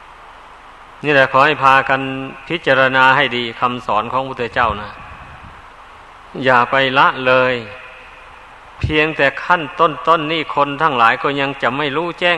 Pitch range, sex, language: 125-155 Hz, male, Thai